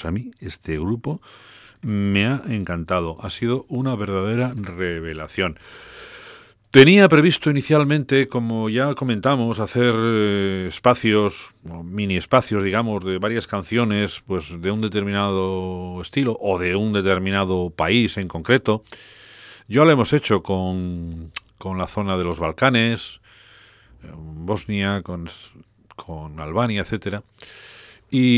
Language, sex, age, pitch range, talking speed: English, male, 40-59, 85-120 Hz, 115 wpm